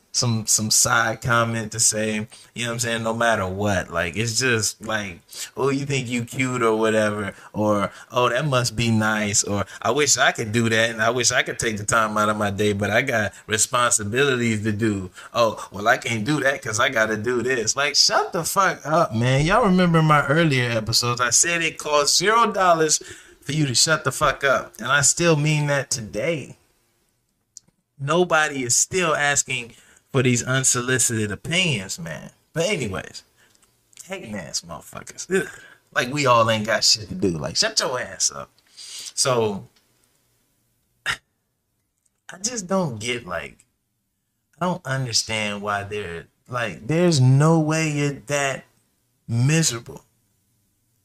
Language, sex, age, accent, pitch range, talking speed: English, male, 20-39, American, 110-145 Hz, 165 wpm